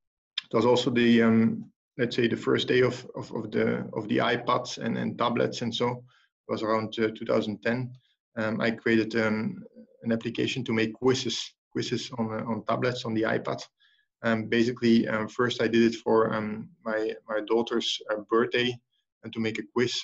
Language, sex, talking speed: English, male, 190 wpm